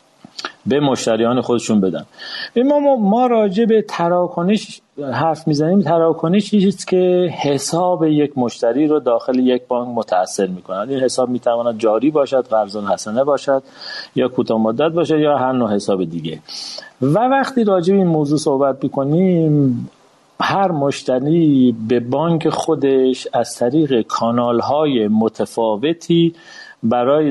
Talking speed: 125 wpm